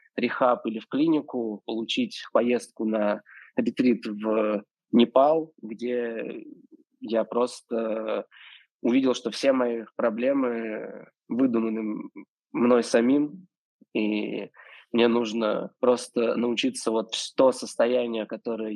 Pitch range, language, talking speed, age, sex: 110-125 Hz, Russian, 95 wpm, 20-39, male